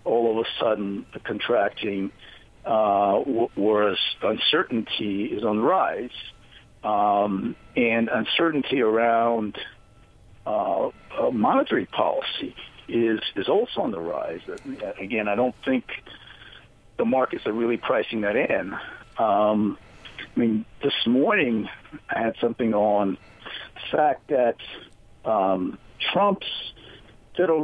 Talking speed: 115 wpm